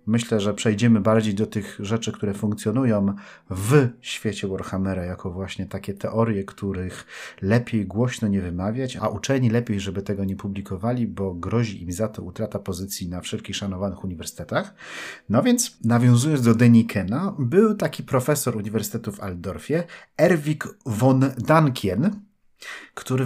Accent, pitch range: native, 100-130 Hz